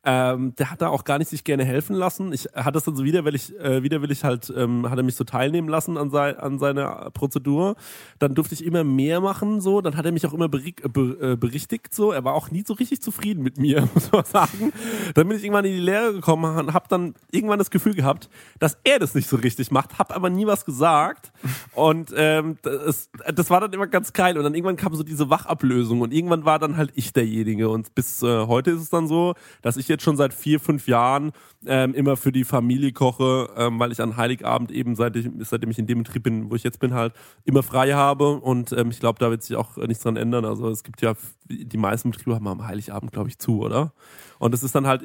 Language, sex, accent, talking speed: German, male, German, 250 wpm